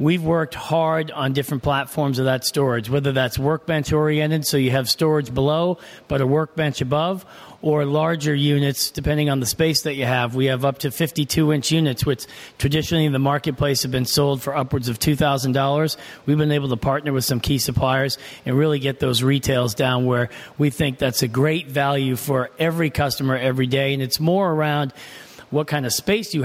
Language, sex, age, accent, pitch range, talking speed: English, male, 40-59, American, 130-150 Hz, 195 wpm